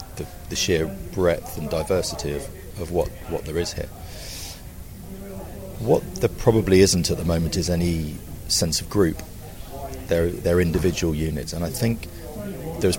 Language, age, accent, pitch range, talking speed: English, 40-59, British, 80-95 Hz, 150 wpm